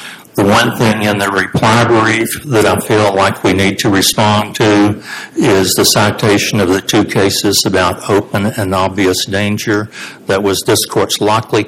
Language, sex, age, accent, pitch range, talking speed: English, male, 60-79, American, 100-115 Hz, 170 wpm